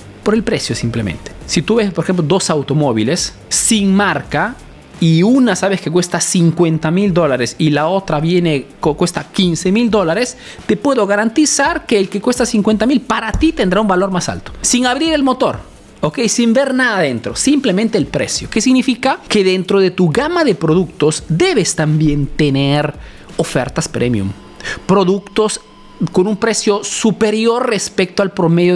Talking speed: 165 wpm